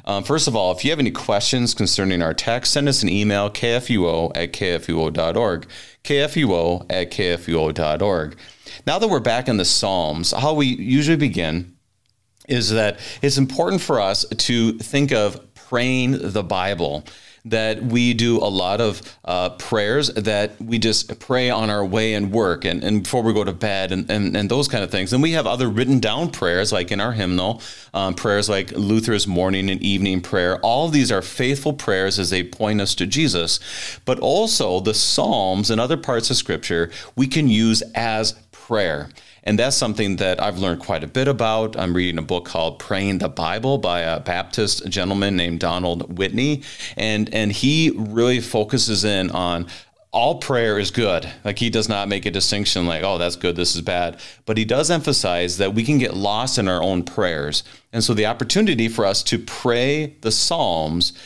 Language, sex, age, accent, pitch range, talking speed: English, male, 30-49, American, 90-120 Hz, 190 wpm